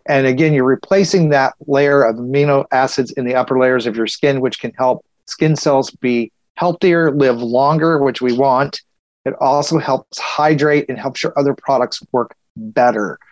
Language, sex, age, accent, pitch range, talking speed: English, male, 40-59, American, 125-145 Hz, 175 wpm